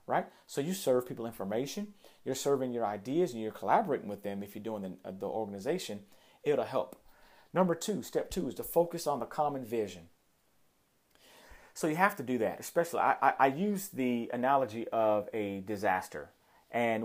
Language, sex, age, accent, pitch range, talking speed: English, male, 40-59, American, 105-140 Hz, 180 wpm